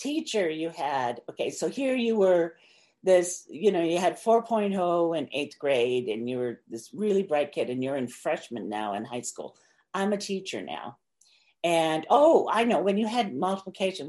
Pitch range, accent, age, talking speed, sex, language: 165-220 Hz, American, 50-69, 185 wpm, female, English